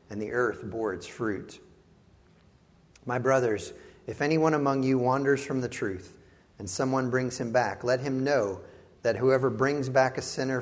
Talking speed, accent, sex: 170 wpm, American, male